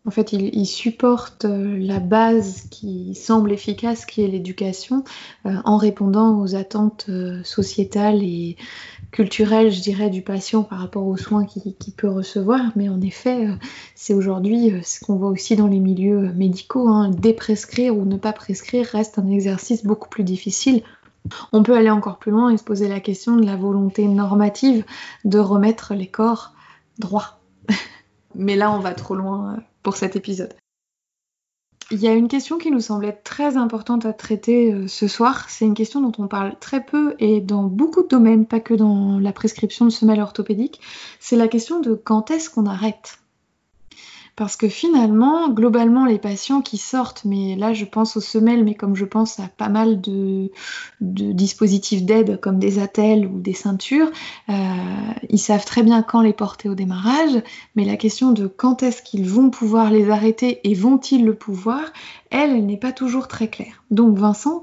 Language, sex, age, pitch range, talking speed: French, female, 20-39, 200-230 Hz, 180 wpm